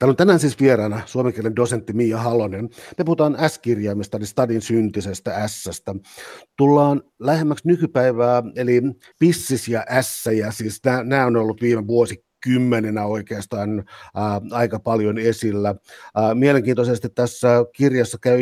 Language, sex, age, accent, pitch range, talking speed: Finnish, male, 50-69, native, 110-130 Hz, 125 wpm